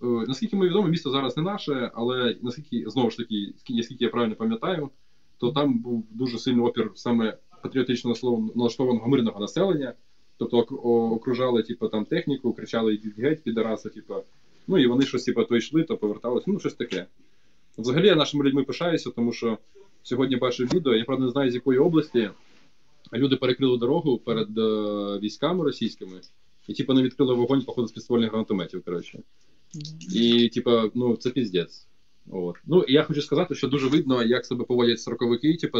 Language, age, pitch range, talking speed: Ukrainian, 20-39, 110-135 Hz, 170 wpm